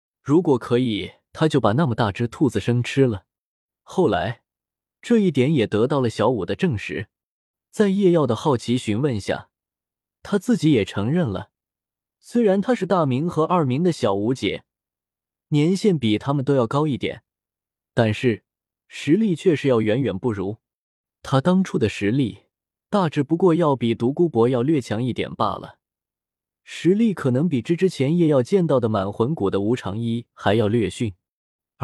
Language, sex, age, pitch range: Chinese, male, 20-39, 110-165 Hz